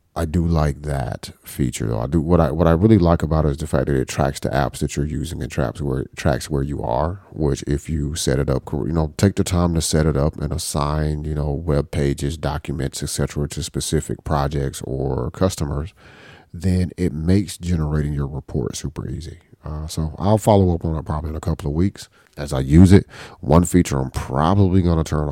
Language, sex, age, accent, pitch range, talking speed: English, male, 40-59, American, 70-85 Hz, 225 wpm